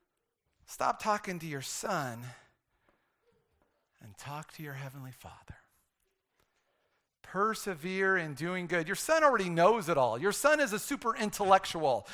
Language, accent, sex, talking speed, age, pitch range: English, American, male, 135 wpm, 40-59, 135-220 Hz